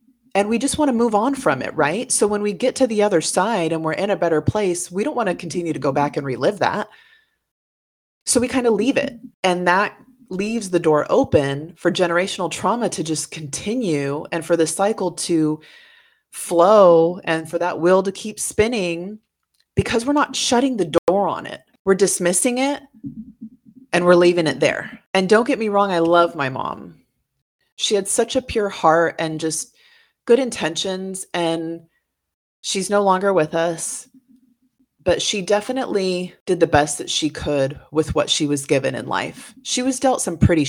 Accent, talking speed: American, 190 wpm